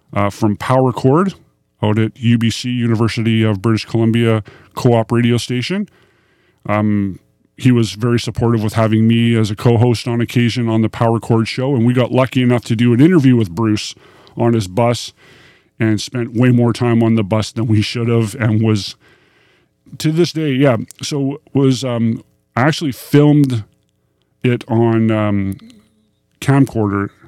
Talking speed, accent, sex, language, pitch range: 165 wpm, American, male, English, 110-125 Hz